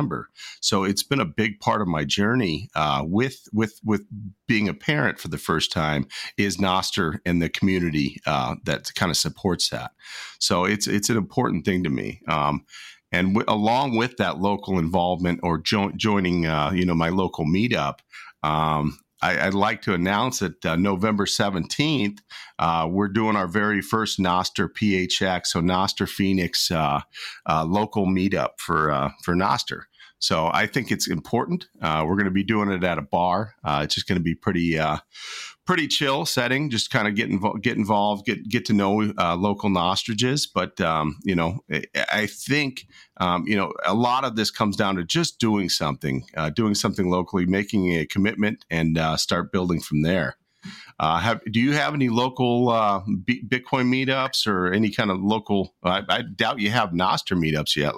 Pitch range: 85-110 Hz